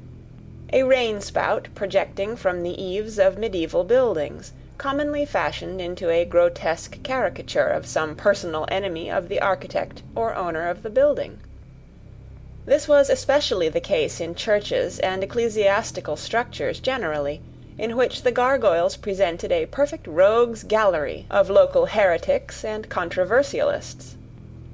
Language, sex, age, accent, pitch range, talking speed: English, female, 30-49, American, 175-265 Hz, 125 wpm